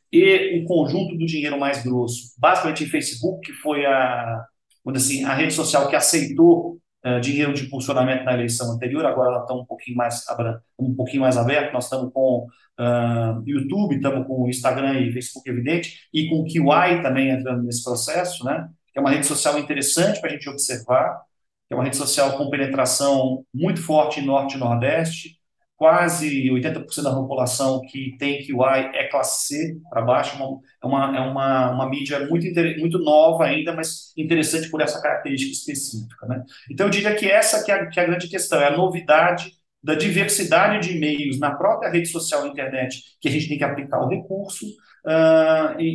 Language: Portuguese